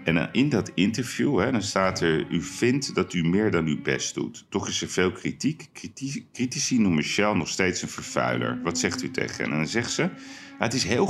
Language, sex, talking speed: Dutch, male, 225 wpm